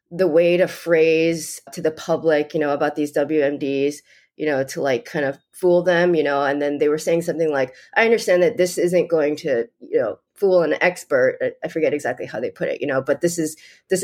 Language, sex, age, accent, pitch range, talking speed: English, female, 20-39, American, 140-185 Hz, 230 wpm